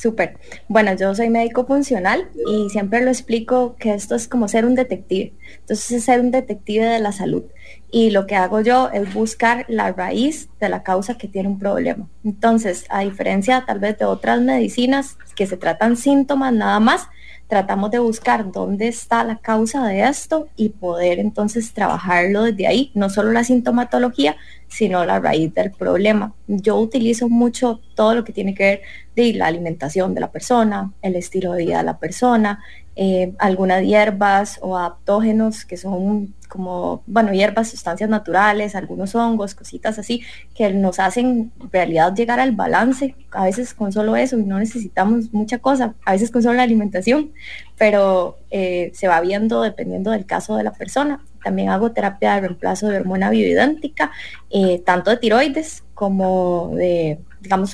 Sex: female